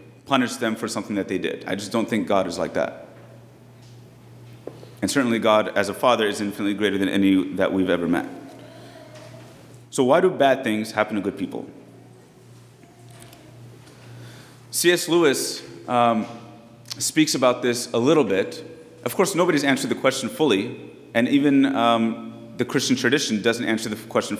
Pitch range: 115-135 Hz